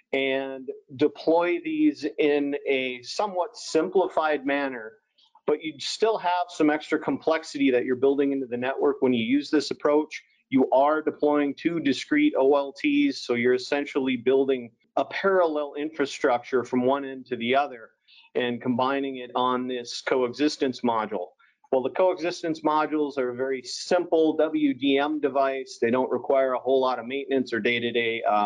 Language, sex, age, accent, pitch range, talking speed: English, male, 40-59, American, 130-155 Hz, 150 wpm